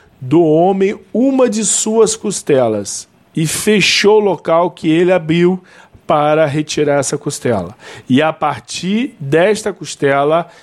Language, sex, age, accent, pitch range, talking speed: Portuguese, male, 40-59, Brazilian, 150-185 Hz, 125 wpm